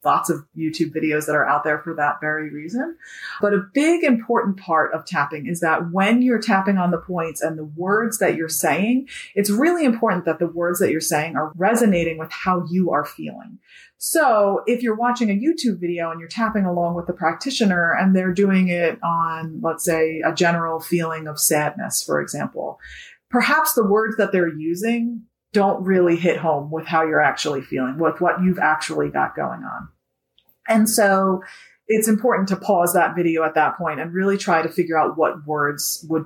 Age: 30-49